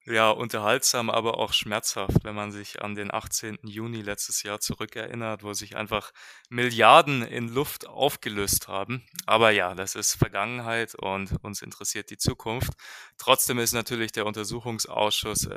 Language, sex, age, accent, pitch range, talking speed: German, male, 20-39, German, 105-120 Hz, 145 wpm